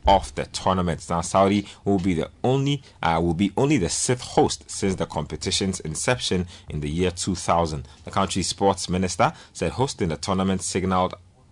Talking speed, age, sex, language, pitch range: 170 wpm, 30-49, male, English, 85-100 Hz